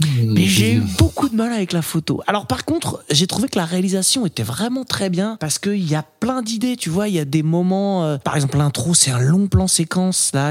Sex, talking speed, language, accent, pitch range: male, 255 wpm, French, French, 130-180 Hz